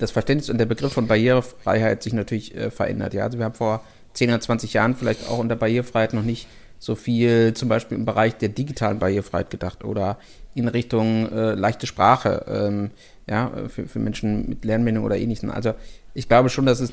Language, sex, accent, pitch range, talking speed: German, male, German, 110-125 Hz, 200 wpm